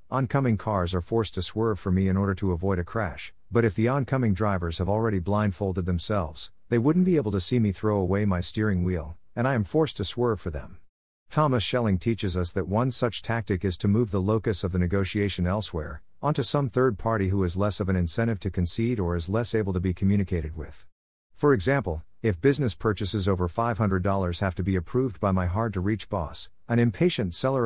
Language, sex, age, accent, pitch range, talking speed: English, male, 50-69, American, 90-115 Hz, 215 wpm